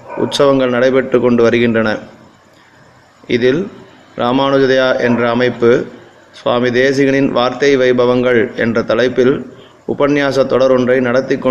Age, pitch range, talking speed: 30-49, 125-135 Hz, 90 wpm